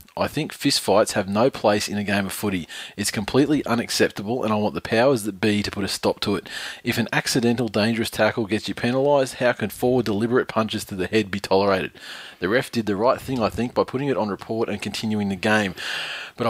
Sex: male